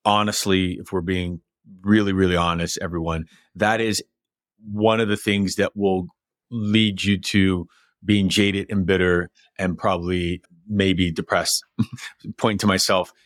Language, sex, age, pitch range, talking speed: English, male, 30-49, 95-110 Hz, 135 wpm